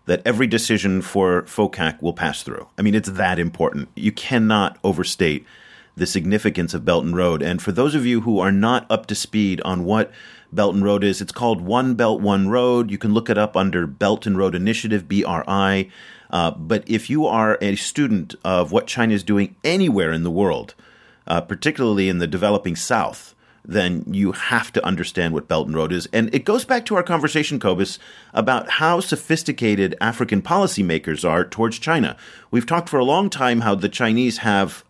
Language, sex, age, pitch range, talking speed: English, male, 40-59, 95-125 Hz, 195 wpm